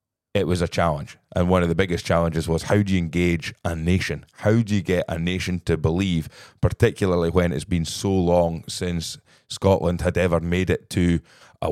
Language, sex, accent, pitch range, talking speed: English, male, British, 85-100 Hz, 200 wpm